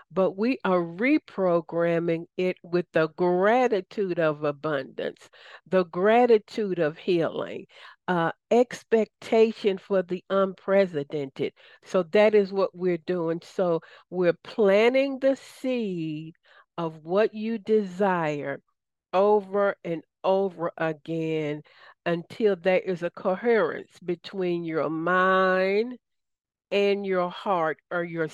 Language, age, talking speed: English, 50-69, 110 wpm